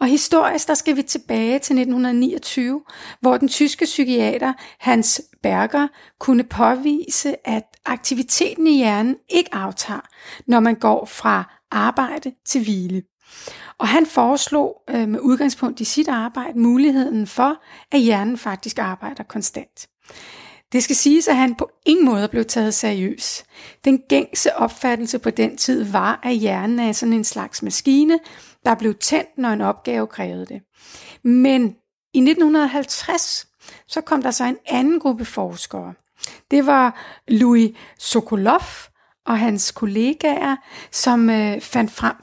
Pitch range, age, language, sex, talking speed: 230-290 Hz, 40-59, Danish, female, 140 wpm